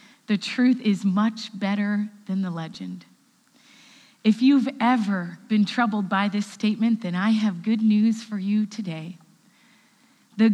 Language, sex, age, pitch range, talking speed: English, female, 30-49, 205-250 Hz, 140 wpm